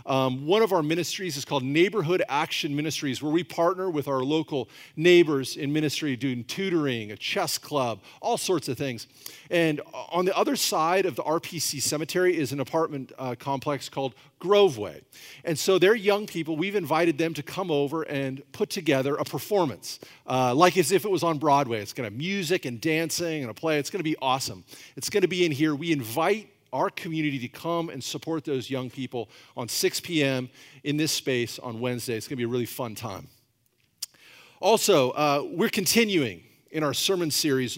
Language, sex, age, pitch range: English, male, 40-59, 130-165 Hz